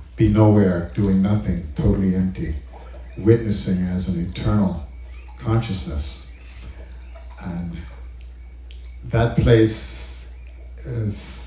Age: 50-69